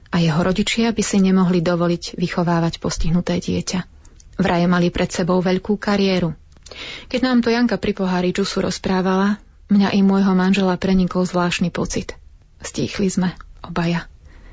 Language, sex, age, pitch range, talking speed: Slovak, female, 30-49, 170-195 Hz, 140 wpm